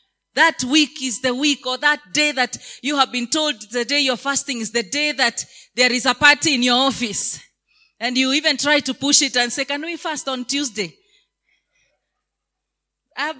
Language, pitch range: English, 260-320 Hz